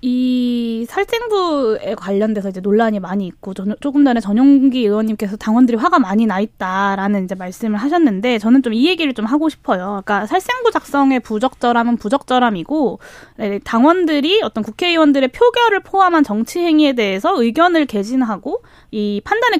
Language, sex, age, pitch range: Korean, female, 20-39, 215-315 Hz